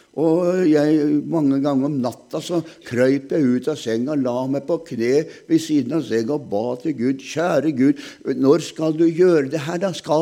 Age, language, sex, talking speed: 60-79, German, male, 200 wpm